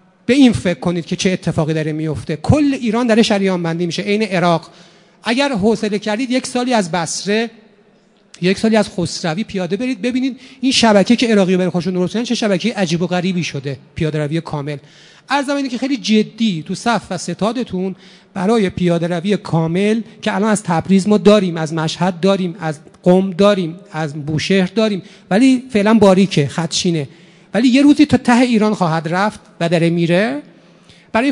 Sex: male